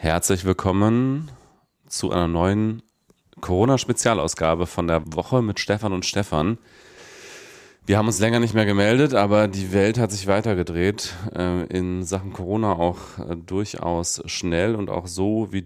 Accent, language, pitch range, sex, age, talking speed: German, German, 85-110 Hz, male, 30-49, 140 wpm